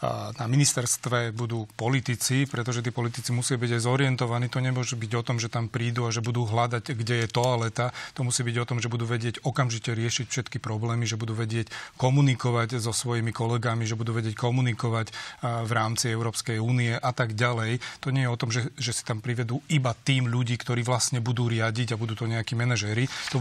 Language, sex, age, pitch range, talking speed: Slovak, male, 30-49, 120-130 Hz, 205 wpm